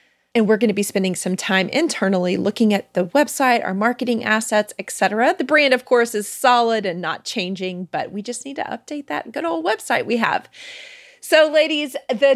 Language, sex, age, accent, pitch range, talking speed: English, female, 30-49, American, 190-245 Hz, 200 wpm